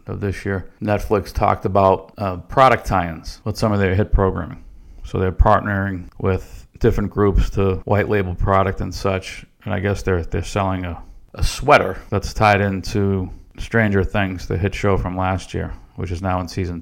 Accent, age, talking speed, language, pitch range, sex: American, 50-69, 185 wpm, English, 90-105 Hz, male